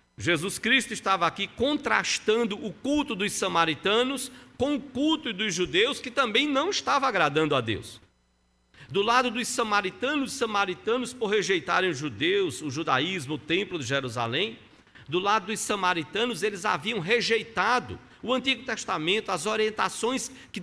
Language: Portuguese